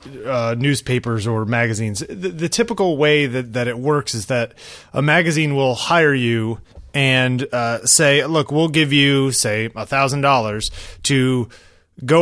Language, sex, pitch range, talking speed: English, male, 115-150 Hz, 155 wpm